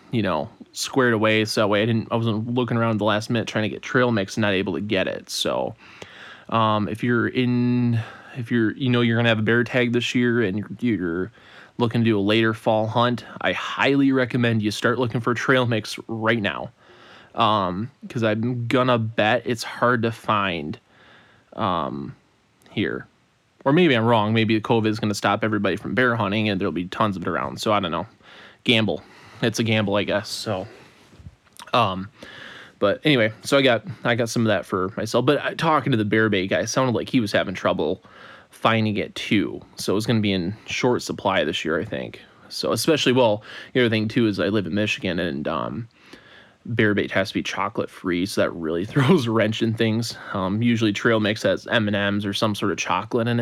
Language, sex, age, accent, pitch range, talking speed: English, male, 20-39, American, 105-120 Hz, 220 wpm